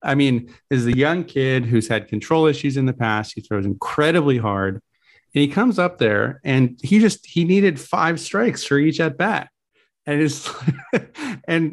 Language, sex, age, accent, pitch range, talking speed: English, male, 30-49, American, 115-150 Hz, 190 wpm